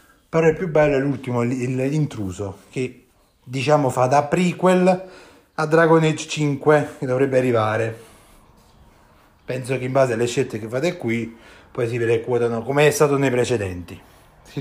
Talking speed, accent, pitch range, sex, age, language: 150 wpm, native, 125-175 Hz, male, 30-49, Italian